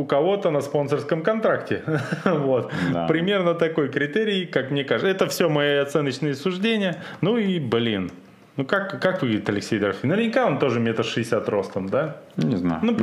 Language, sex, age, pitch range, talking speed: Russian, male, 20-39, 130-205 Hz, 150 wpm